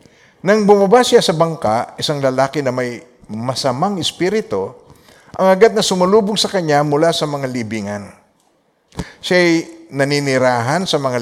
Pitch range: 135-195 Hz